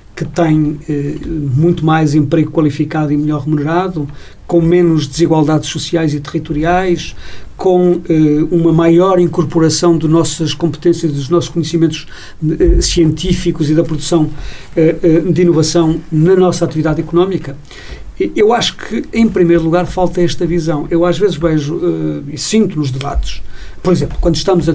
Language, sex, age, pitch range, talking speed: Portuguese, male, 50-69, 155-175 Hz, 150 wpm